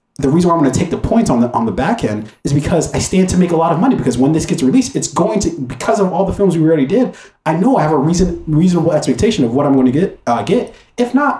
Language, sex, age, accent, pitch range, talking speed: English, male, 30-49, American, 110-160 Hz, 310 wpm